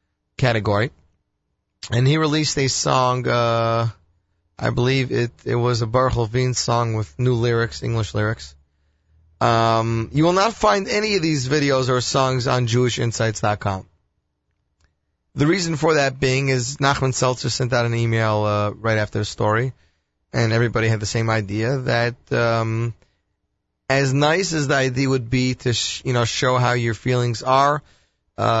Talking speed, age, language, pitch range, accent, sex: 160 wpm, 30-49, English, 105-125 Hz, American, male